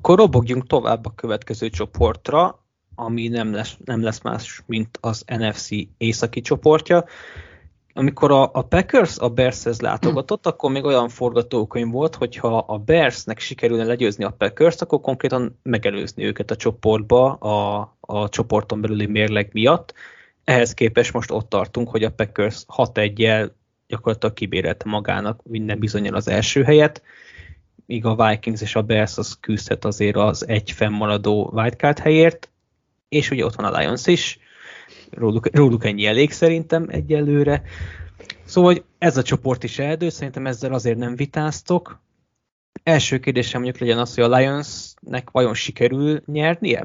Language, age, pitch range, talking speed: Hungarian, 20-39, 110-145 Hz, 145 wpm